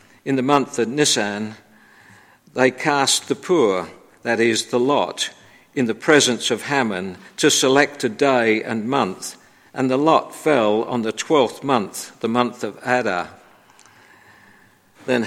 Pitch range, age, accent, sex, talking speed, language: 115-145 Hz, 50-69, British, male, 145 wpm, English